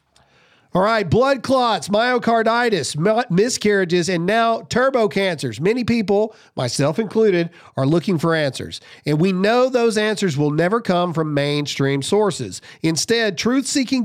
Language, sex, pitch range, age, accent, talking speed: English, male, 155-210 Hz, 40-59, American, 130 wpm